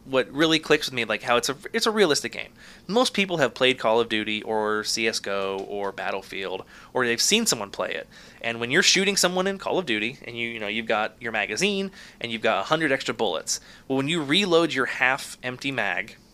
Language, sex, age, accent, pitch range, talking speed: English, male, 20-39, American, 115-155 Hz, 225 wpm